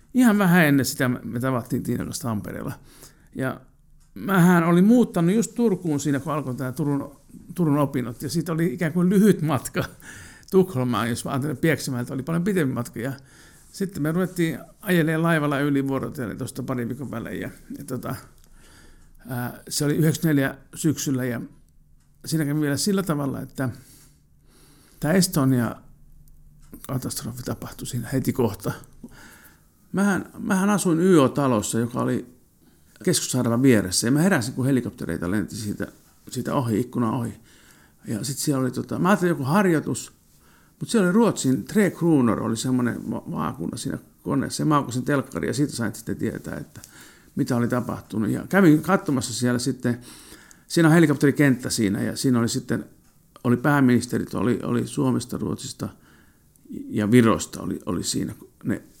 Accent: native